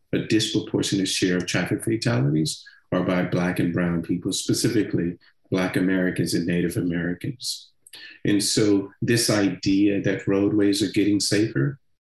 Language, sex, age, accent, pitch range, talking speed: English, male, 40-59, American, 90-105 Hz, 135 wpm